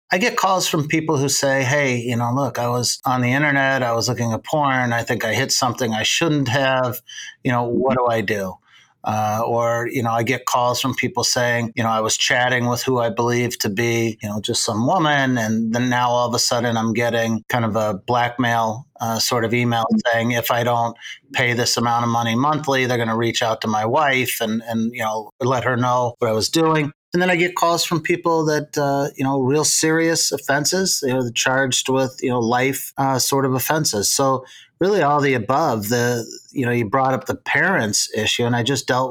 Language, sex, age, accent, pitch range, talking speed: English, male, 30-49, American, 115-135 Hz, 230 wpm